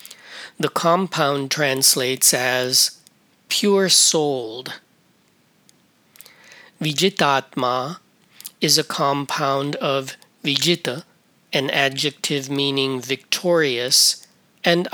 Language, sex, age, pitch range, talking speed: English, male, 40-59, 140-165 Hz, 65 wpm